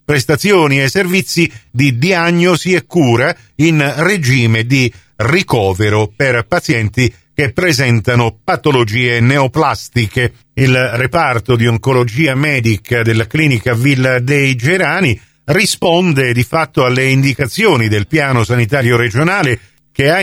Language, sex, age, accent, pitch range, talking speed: Italian, male, 50-69, native, 125-180 Hz, 115 wpm